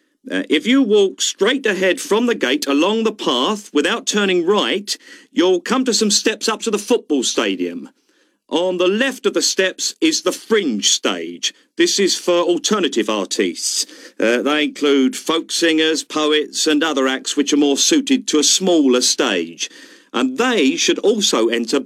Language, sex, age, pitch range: Vietnamese, male, 50-69, 145-235 Hz